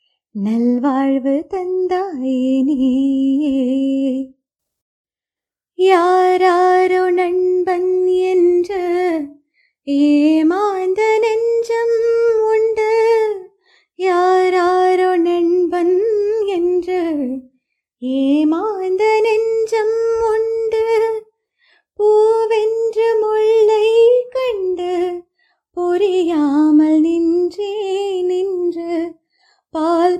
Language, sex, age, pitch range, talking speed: Tamil, female, 20-39, 275-390 Hz, 40 wpm